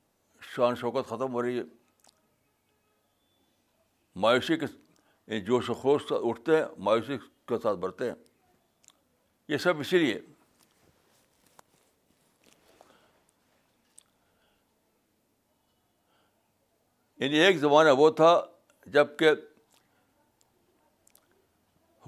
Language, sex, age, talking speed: Urdu, male, 60-79, 75 wpm